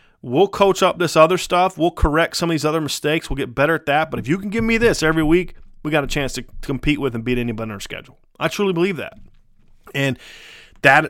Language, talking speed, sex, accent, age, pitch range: English, 250 wpm, male, American, 30-49, 120-165 Hz